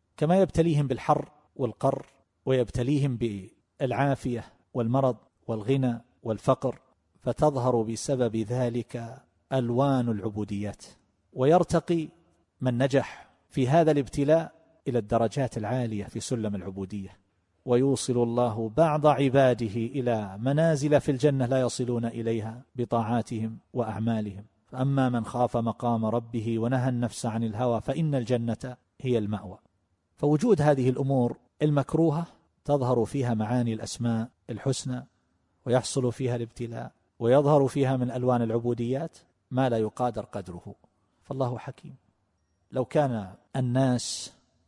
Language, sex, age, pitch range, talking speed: Arabic, male, 40-59, 115-135 Hz, 105 wpm